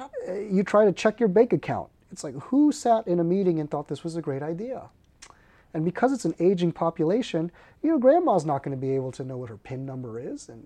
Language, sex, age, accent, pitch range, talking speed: English, male, 30-49, American, 135-180 Hz, 235 wpm